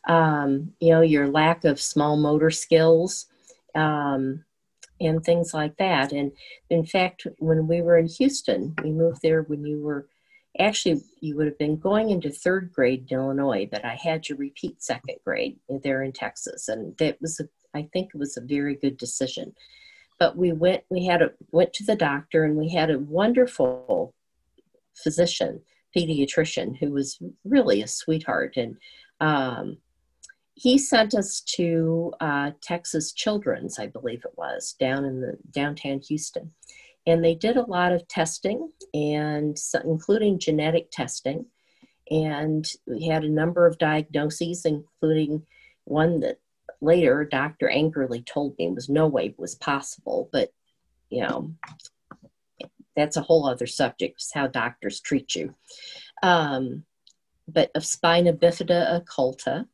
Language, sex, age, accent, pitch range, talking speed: English, female, 50-69, American, 150-175 Hz, 155 wpm